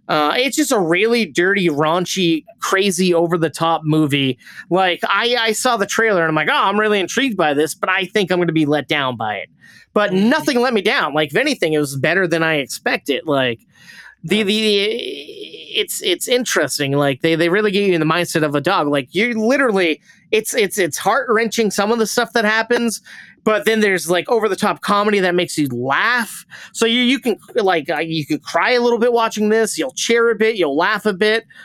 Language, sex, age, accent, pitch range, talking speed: English, male, 30-49, American, 165-225 Hz, 225 wpm